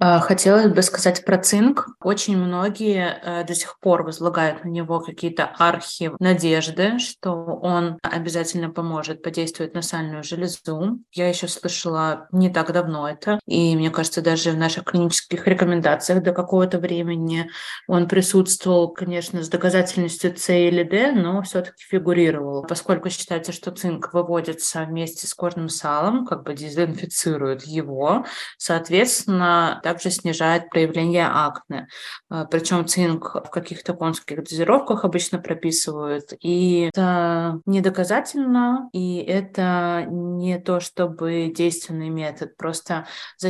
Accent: native